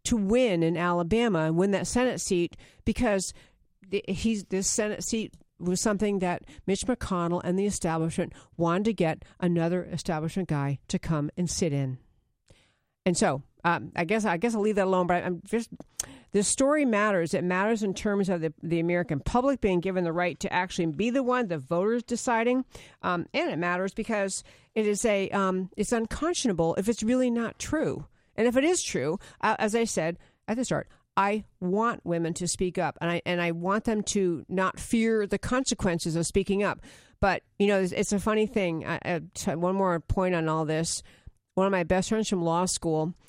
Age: 50-69